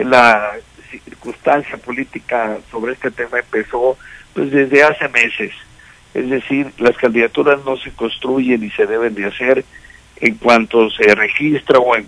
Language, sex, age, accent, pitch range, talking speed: Spanish, male, 60-79, Mexican, 115-140 Hz, 145 wpm